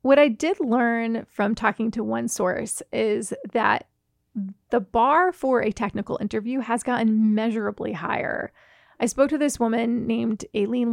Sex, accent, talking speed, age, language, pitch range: female, American, 155 wpm, 30-49, English, 215-245 Hz